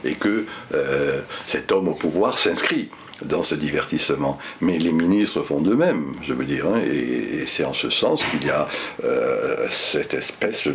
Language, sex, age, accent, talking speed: French, male, 60-79, French, 185 wpm